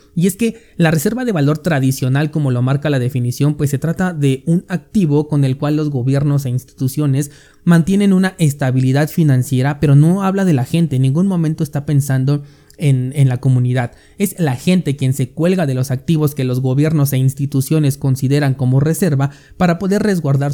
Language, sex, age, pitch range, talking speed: Spanish, male, 30-49, 135-160 Hz, 190 wpm